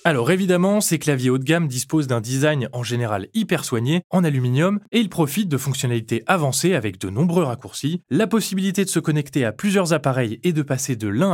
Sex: male